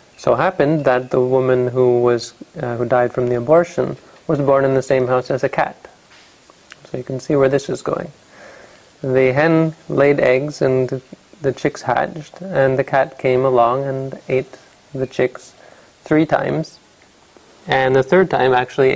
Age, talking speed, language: 30-49, 170 wpm, English